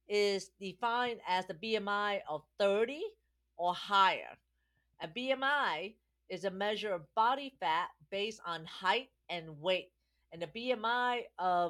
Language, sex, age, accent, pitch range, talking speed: English, female, 40-59, American, 165-230 Hz, 135 wpm